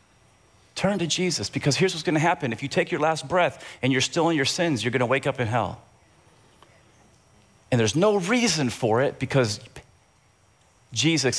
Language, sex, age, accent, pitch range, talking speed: English, male, 40-59, American, 125-205 Hz, 180 wpm